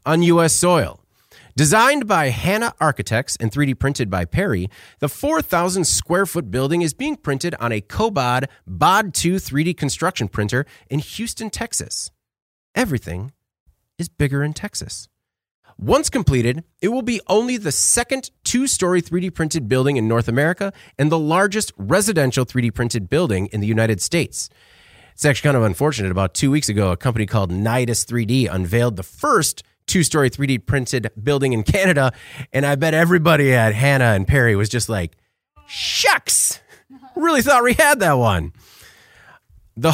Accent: American